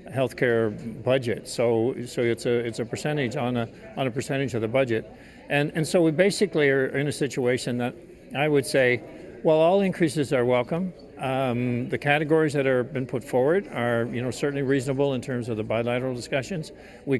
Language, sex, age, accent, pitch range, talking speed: English, male, 50-69, American, 120-150 Hz, 190 wpm